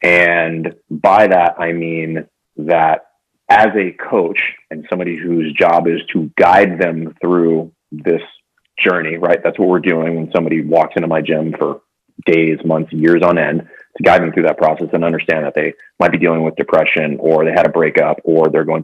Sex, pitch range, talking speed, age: male, 80-100 Hz, 190 wpm, 30-49